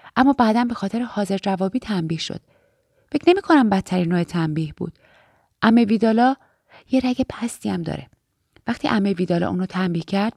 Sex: female